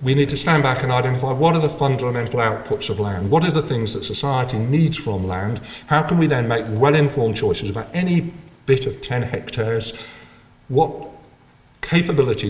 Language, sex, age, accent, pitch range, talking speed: English, male, 50-69, British, 100-130 Hz, 180 wpm